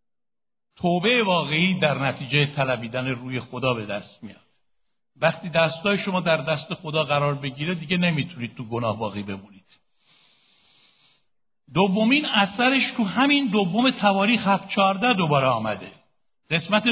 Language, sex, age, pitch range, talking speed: Persian, male, 60-79, 170-235 Hz, 120 wpm